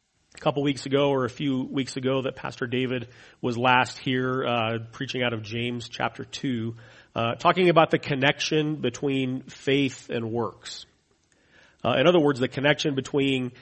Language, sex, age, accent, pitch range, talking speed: English, male, 40-59, American, 115-140 Hz, 170 wpm